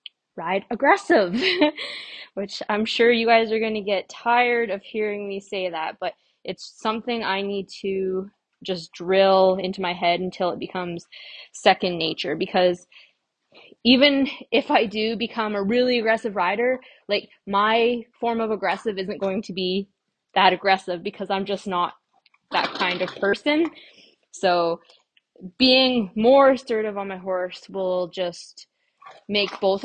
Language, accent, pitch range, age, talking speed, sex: English, American, 190-235 Hz, 20-39, 145 wpm, female